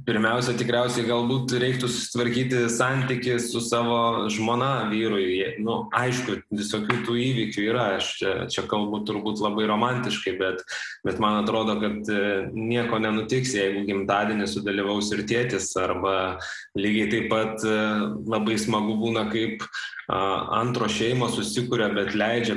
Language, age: English, 20-39